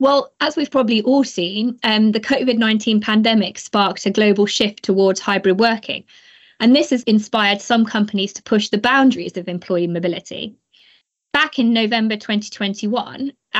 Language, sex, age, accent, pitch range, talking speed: English, female, 20-39, British, 195-240 Hz, 150 wpm